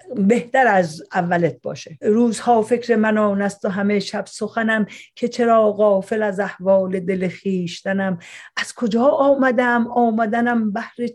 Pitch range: 200-250 Hz